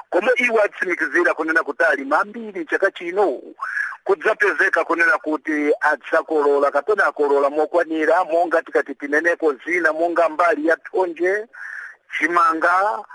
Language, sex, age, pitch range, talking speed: English, male, 50-69, 165-225 Hz, 115 wpm